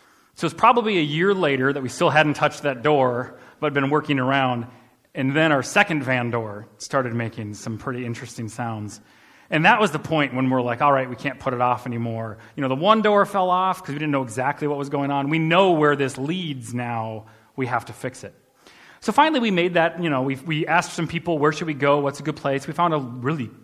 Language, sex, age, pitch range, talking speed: English, male, 30-49, 125-155 Hz, 250 wpm